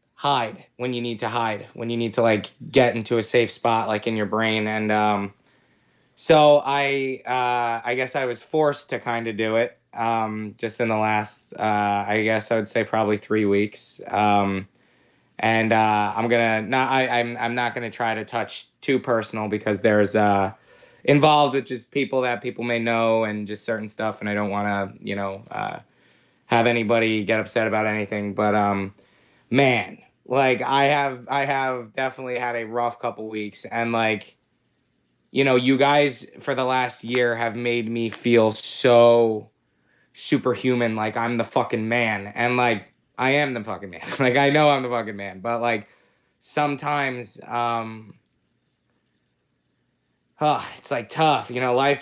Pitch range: 110-125 Hz